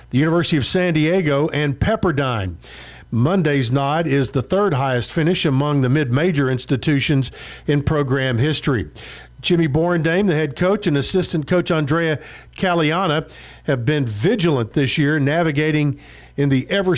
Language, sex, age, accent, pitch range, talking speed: English, male, 50-69, American, 135-165 Hz, 140 wpm